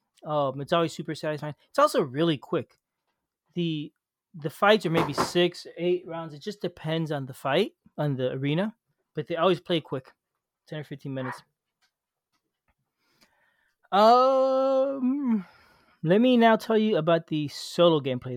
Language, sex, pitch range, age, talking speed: English, male, 145-175 Hz, 30-49, 145 wpm